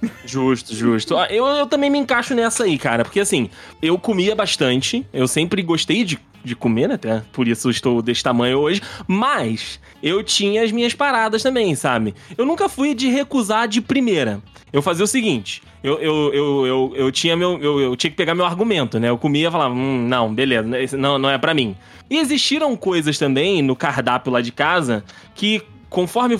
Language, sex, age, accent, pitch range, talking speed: Portuguese, male, 20-39, Brazilian, 125-200 Hz, 195 wpm